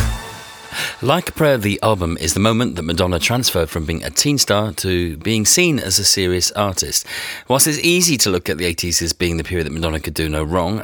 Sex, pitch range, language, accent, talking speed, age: male, 80-115 Hz, English, British, 225 wpm, 40-59